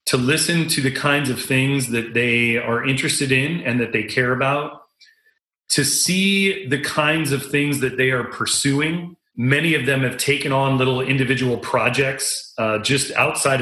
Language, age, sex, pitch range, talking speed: English, 30-49, male, 125-150 Hz, 170 wpm